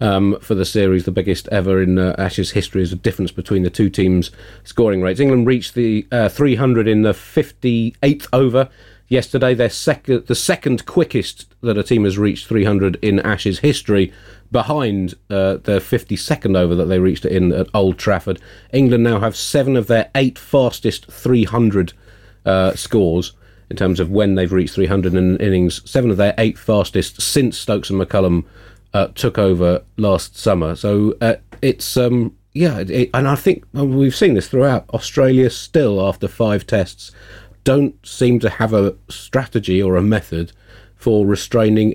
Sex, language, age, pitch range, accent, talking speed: male, English, 40-59, 95-120 Hz, British, 175 wpm